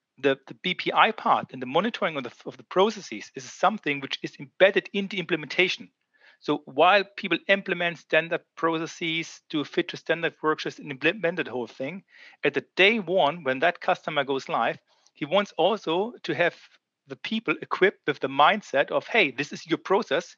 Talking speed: 175 wpm